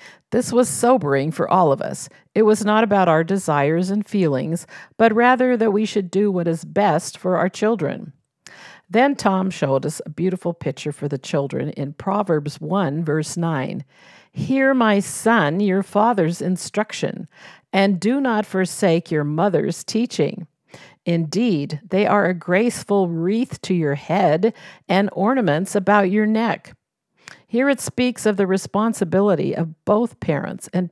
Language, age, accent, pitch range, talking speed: English, 50-69, American, 165-215 Hz, 155 wpm